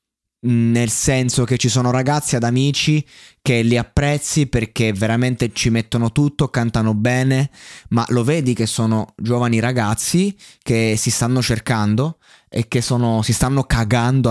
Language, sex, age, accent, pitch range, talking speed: Italian, male, 20-39, native, 105-120 Hz, 145 wpm